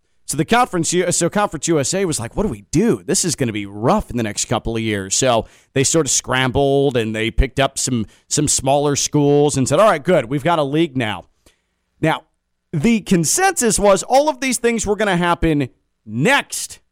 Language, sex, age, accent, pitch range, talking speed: English, male, 40-59, American, 140-220 Hz, 215 wpm